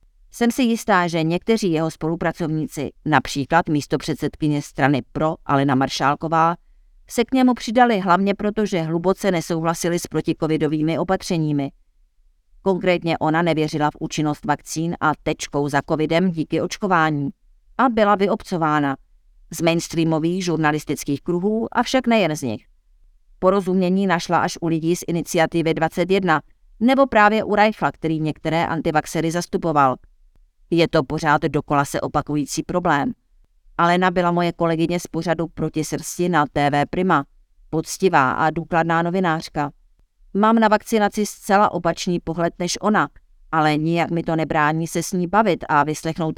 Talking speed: 135 wpm